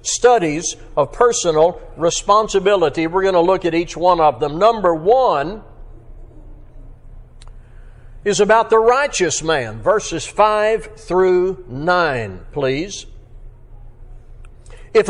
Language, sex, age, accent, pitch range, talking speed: English, male, 60-79, American, 145-220 Hz, 105 wpm